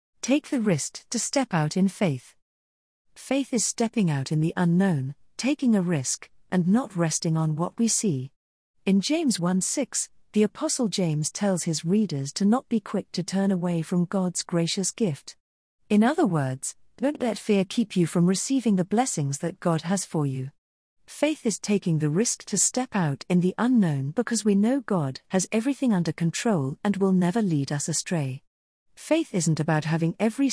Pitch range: 155-220 Hz